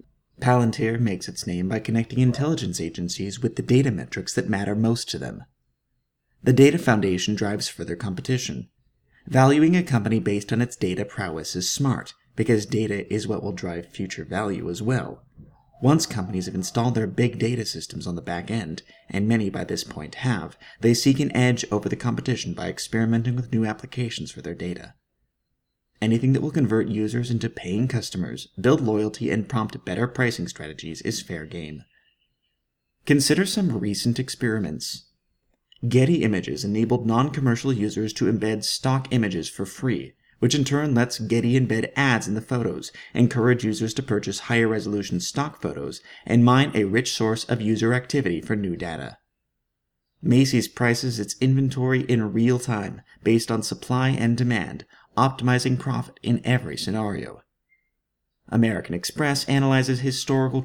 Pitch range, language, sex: 100-125 Hz, English, male